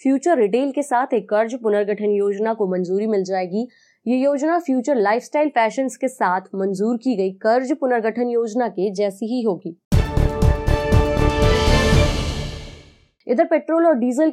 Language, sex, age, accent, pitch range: Hindi, female, 20-39, native, 200-255 Hz